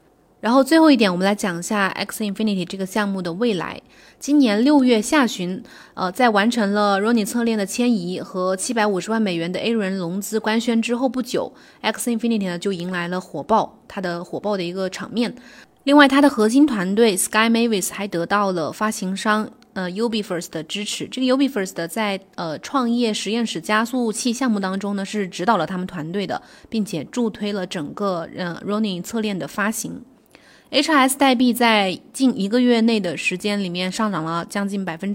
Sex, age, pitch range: female, 20-39, 190-240 Hz